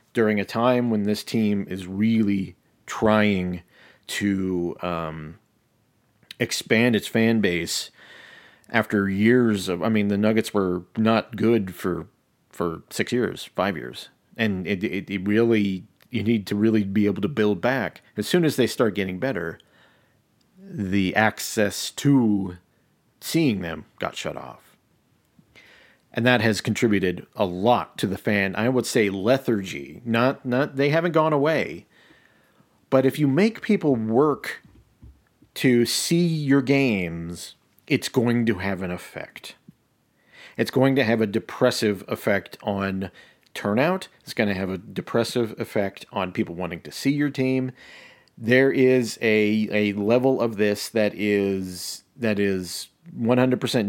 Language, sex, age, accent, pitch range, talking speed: English, male, 40-59, American, 100-125 Hz, 145 wpm